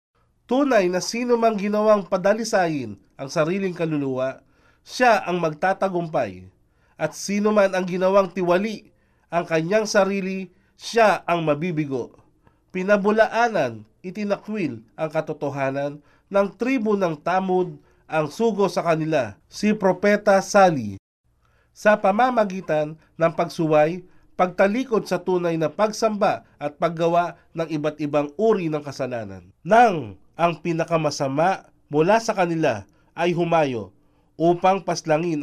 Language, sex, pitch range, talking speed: Filipino, male, 155-200 Hz, 110 wpm